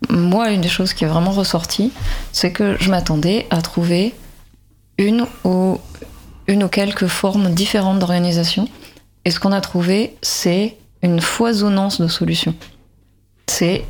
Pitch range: 170-215 Hz